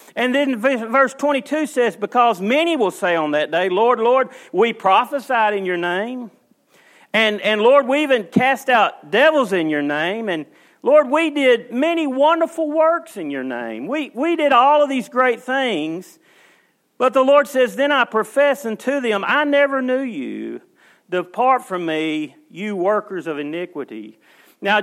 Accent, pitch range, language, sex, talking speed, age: American, 210-270 Hz, English, male, 165 wpm, 40-59